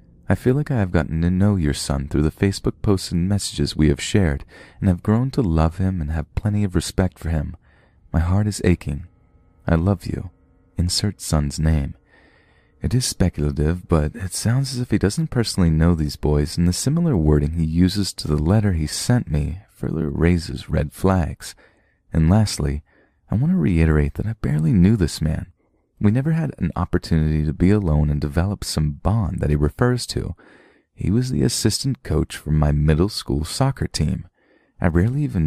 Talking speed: 195 wpm